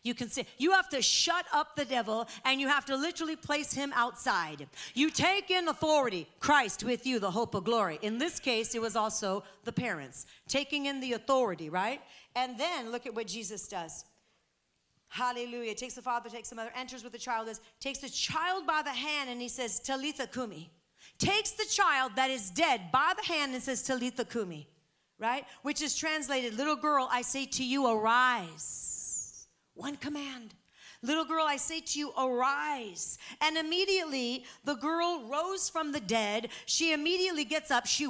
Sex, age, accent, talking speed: female, 40-59, American, 185 wpm